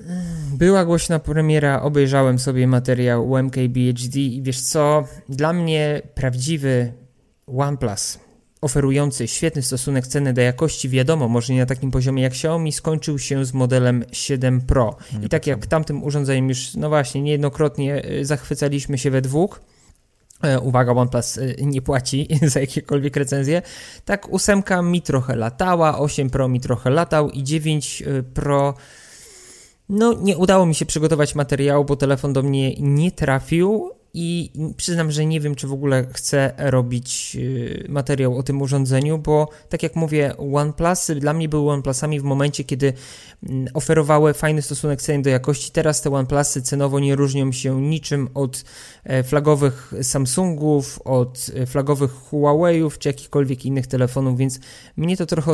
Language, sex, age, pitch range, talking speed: Polish, male, 20-39, 130-160 Hz, 145 wpm